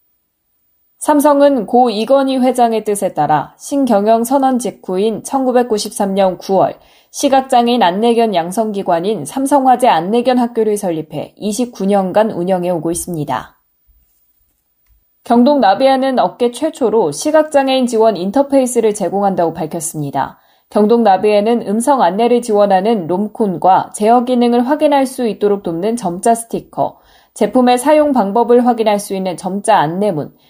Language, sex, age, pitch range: Korean, female, 20-39, 190-250 Hz